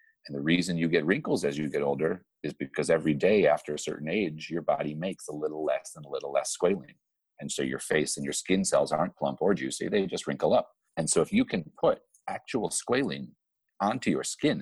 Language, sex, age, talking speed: English, male, 40-59, 230 wpm